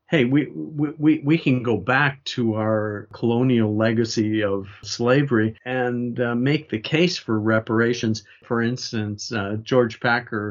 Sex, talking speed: male, 145 wpm